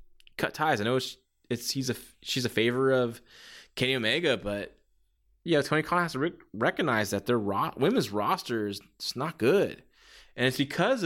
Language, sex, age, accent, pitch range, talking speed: English, male, 20-39, American, 110-155 Hz, 185 wpm